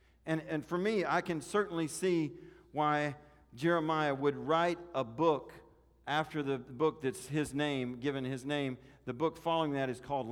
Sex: male